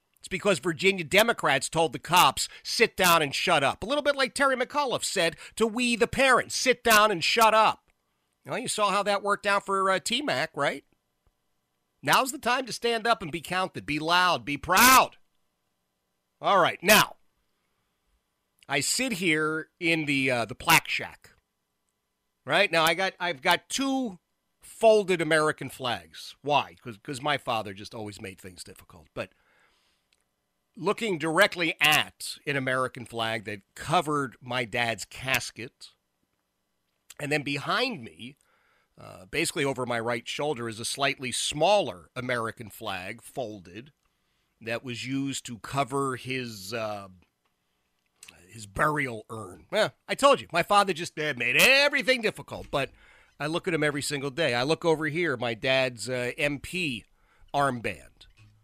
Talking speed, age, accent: 160 wpm, 40-59, American